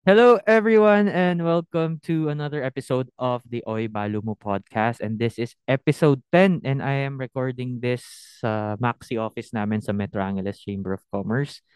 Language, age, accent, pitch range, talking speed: Filipino, 20-39, native, 115-155 Hz, 170 wpm